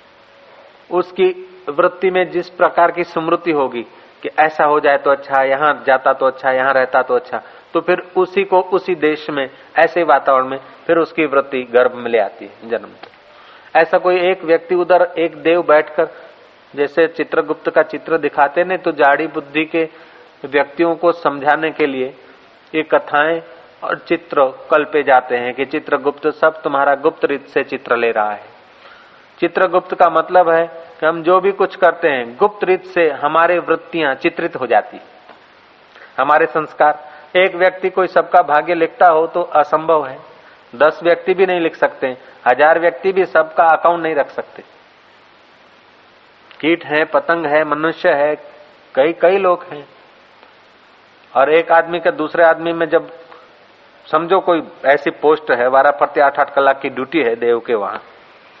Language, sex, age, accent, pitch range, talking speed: Hindi, male, 40-59, native, 145-170 Hz, 120 wpm